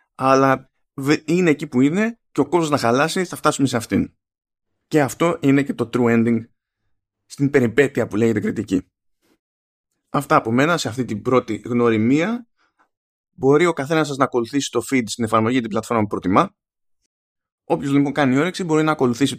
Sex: male